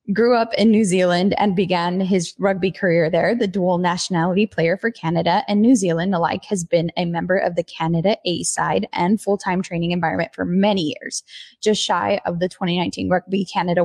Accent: American